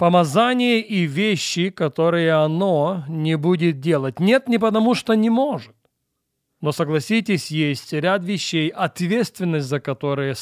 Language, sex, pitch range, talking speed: Russian, male, 150-205 Hz, 125 wpm